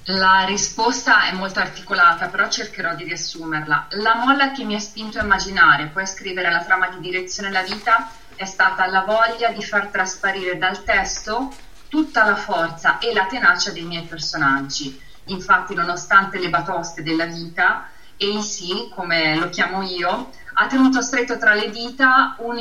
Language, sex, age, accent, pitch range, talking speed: Italian, female, 30-49, native, 180-220 Hz, 165 wpm